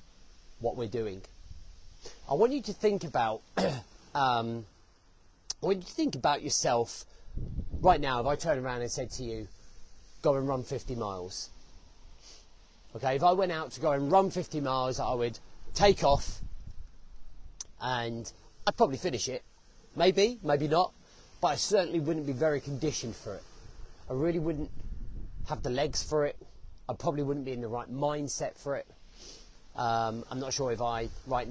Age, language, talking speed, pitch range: 30-49, English, 170 wpm, 110-145 Hz